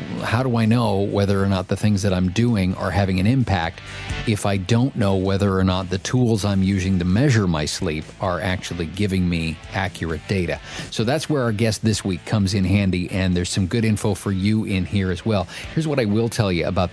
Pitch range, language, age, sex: 90-110 Hz, English, 40-59, male